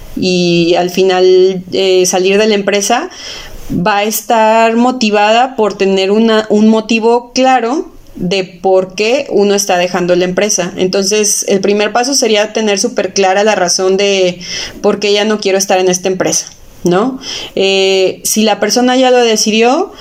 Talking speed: 160 wpm